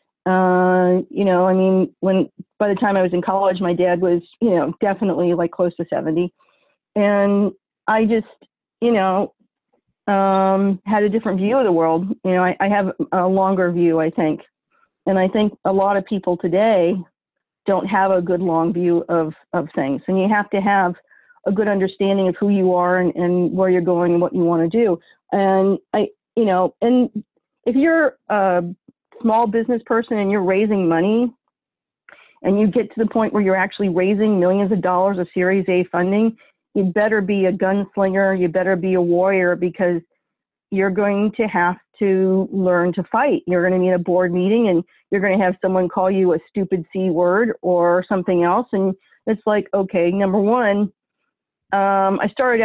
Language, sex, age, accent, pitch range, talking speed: English, female, 40-59, American, 180-210 Hz, 190 wpm